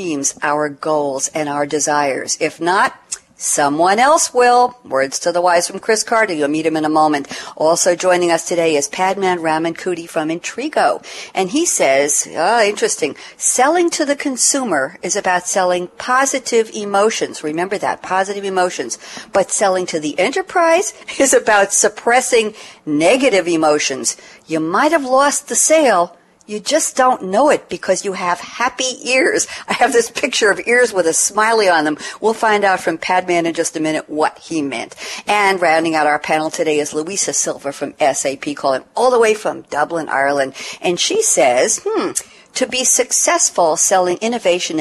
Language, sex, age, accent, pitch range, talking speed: English, female, 60-79, American, 155-245 Hz, 170 wpm